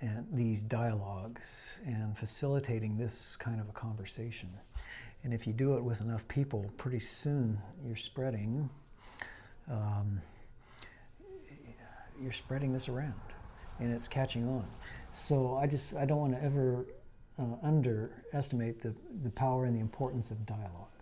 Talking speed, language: 140 wpm, English